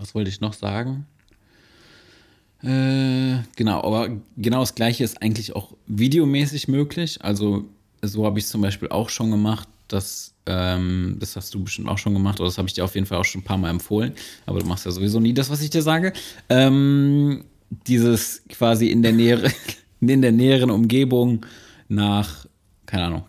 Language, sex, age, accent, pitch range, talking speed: German, male, 20-39, German, 100-115 Hz, 185 wpm